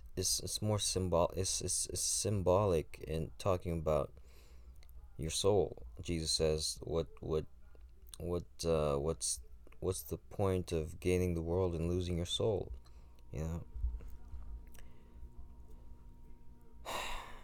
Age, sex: 20-39, male